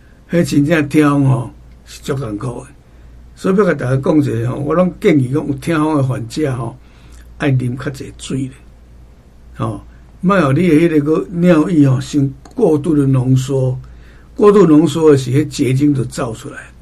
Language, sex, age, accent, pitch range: Chinese, male, 60-79, American, 115-155 Hz